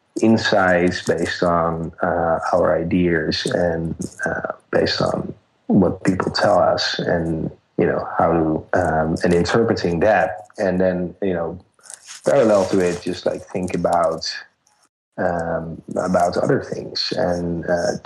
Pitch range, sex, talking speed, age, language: 85-95 Hz, male, 130 wpm, 30-49, English